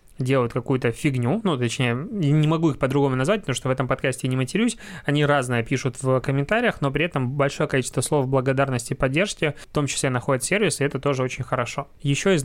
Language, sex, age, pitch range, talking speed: Russian, male, 20-39, 130-145 Hz, 200 wpm